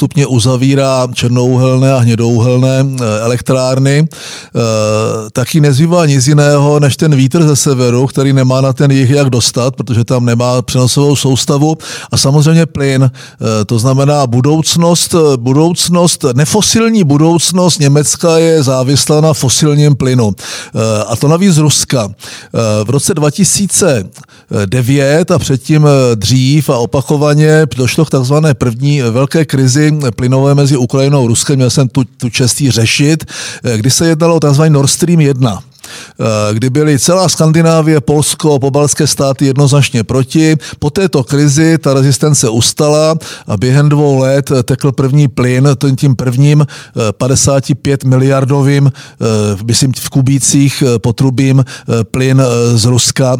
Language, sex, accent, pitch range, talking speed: Czech, male, native, 125-150 Hz, 125 wpm